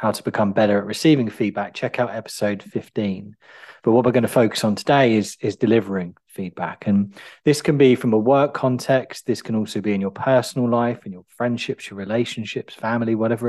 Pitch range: 105-130 Hz